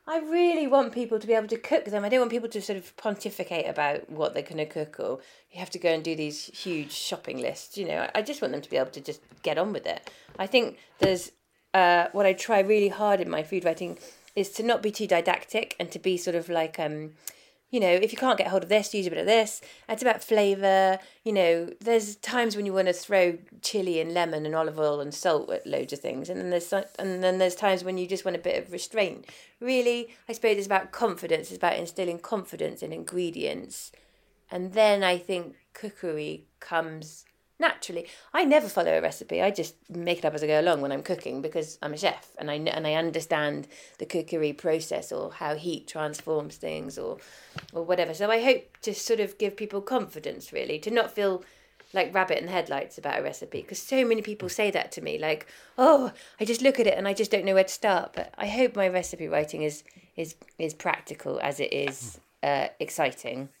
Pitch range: 165-220 Hz